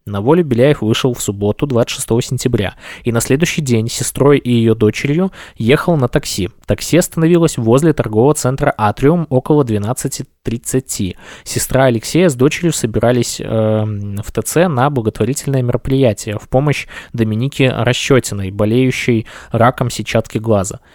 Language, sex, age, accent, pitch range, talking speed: Russian, male, 20-39, native, 110-140 Hz, 130 wpm